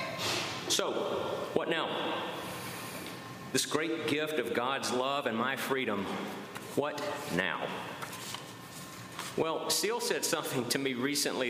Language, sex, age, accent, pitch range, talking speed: English, male, 50-69, American, 115-150 Hz, 110 wpm